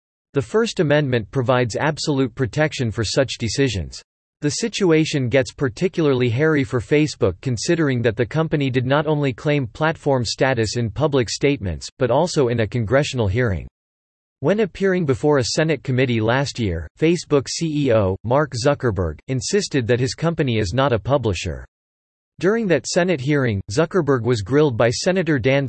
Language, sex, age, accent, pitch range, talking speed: English, male, 40-59, American, 115-150 Hz, 150 wpm